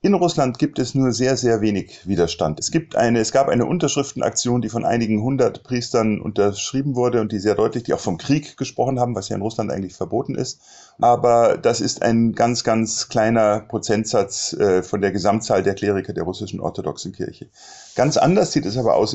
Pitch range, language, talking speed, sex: 110-130 Hz, German, 200 wpm, male